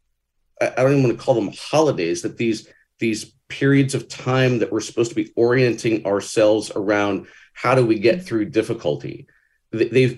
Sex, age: male, 40-59